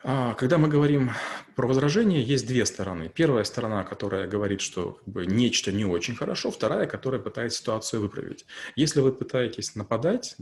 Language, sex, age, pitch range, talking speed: Russian, male, 30-49, 105-140 Hz, 160 wpm